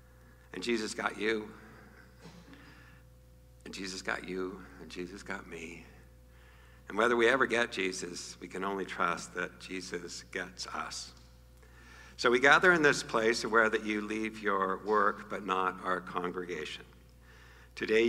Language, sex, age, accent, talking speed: English, male, 60-79, American, 145 wpm